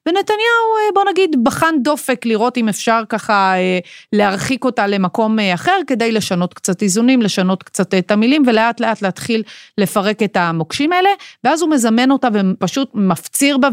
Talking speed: 155 wpm